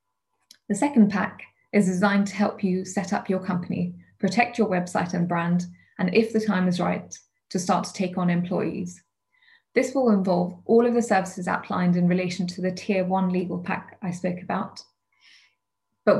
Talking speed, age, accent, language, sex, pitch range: 180 wpm, 20-39, British, English, female, 175-205 Hz